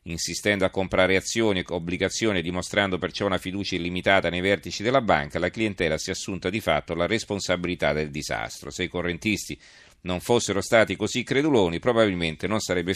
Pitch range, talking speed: 85-100 Hz, 170 wpm